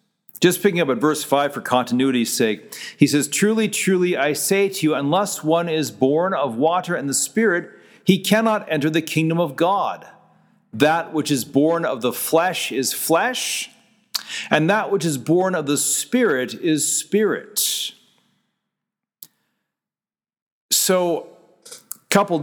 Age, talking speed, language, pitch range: 40-59, 145 wpm, English, 140-200 Hz